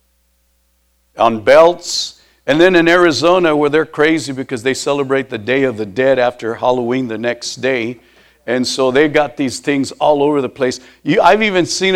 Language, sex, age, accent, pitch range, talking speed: English, male, 60-79, American, 110-165 Hz, 175 wpm